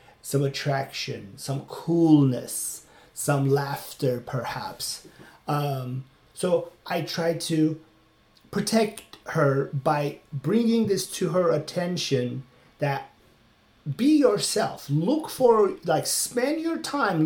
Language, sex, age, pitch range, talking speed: English, male, 40-59, 140-195 Hz, 100 wpm